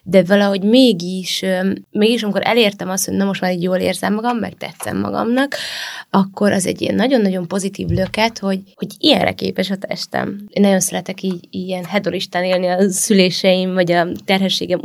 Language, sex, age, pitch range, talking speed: Hungarian, female, 20-39, 180-205 Hz, 175 wpm